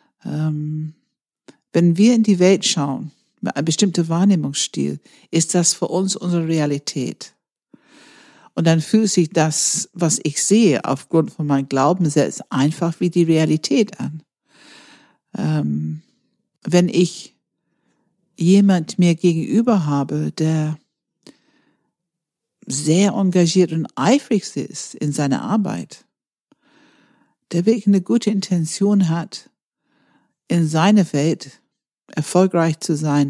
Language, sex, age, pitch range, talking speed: German, female, 60-79, 155-200 Hz, 110 wpm